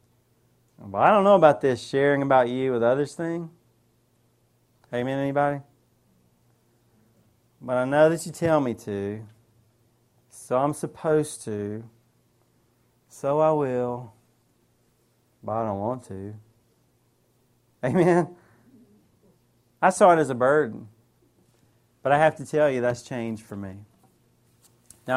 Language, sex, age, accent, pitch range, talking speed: English, male, 30-49, American, 120-170 Hz, 125 wpm